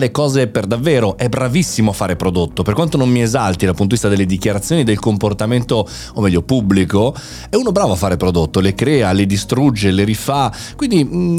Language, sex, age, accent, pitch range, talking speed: Italian, male, 30-49, native, 105-160 Hz, 200 wpm